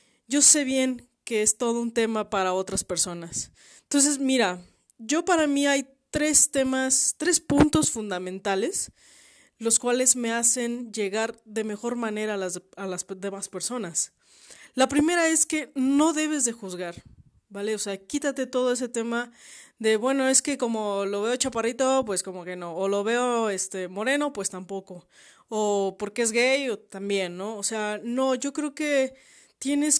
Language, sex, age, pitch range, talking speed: Spanish, female, 20-39, 200-265 Hz, 170 wpm